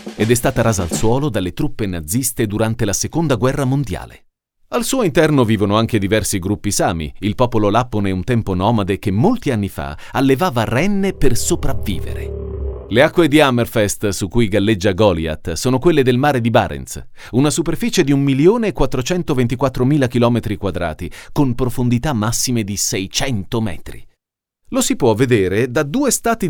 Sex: male